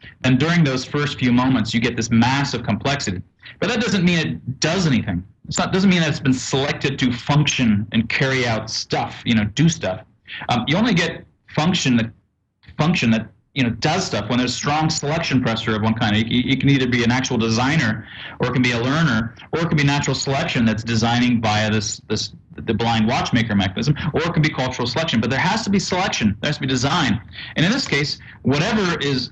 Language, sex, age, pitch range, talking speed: English, male, 30-49, 110-145 Hz, 220 wpm